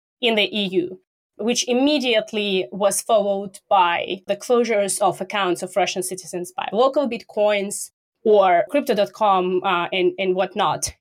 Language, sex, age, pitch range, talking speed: English, female, 20-39, 200-255 Hz, 130 wpm